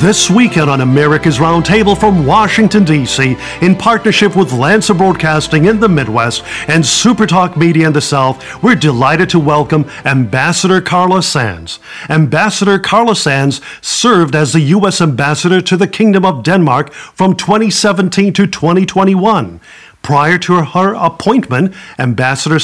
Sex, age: male, 50-69